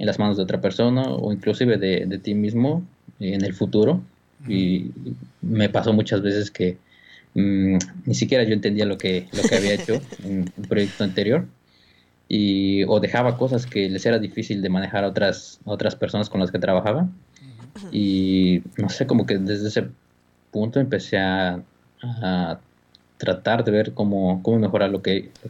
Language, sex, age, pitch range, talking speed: Spanish, male, 20-39, 95-105 Hz, 175 wpm